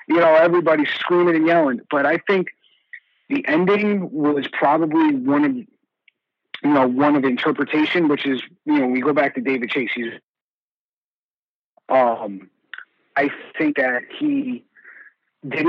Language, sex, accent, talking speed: English, male, American, 145 wpm